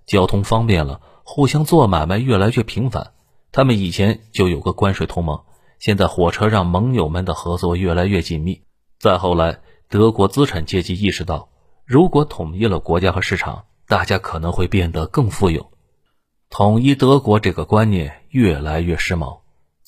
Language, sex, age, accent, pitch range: Chinese, male, 30-49, native, 85-110 Hz